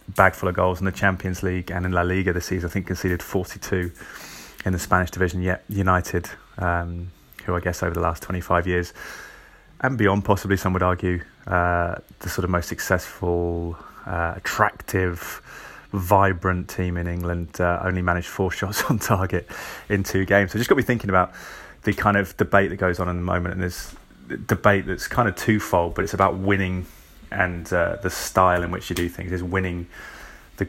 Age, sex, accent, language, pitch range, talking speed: 20-39, male, British, English, 90-95 Hz, 195 wpm